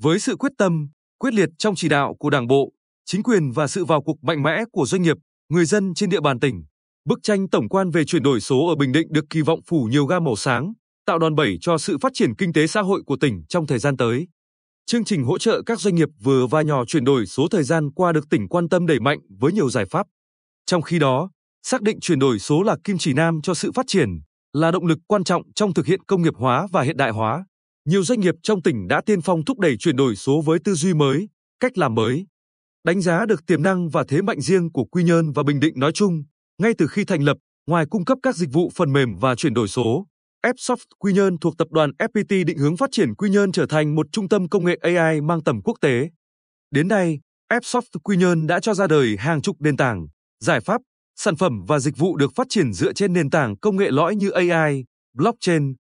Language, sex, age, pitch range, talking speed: Vietnamese, male, 20-39, 145-195 Hz, 250 wpm